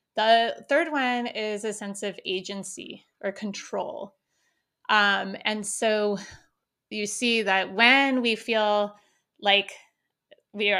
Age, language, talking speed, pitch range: 20-39, English, 115 wpm, 195-235 Hz